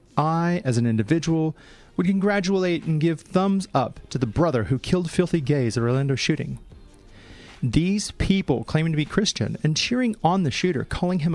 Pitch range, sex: 125-180 Hz, male